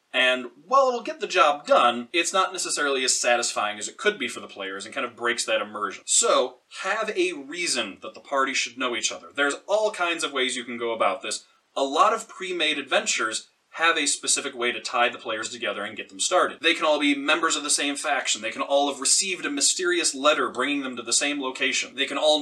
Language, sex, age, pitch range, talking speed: English, male, 30-49, 125-190 Hz, 240 wpm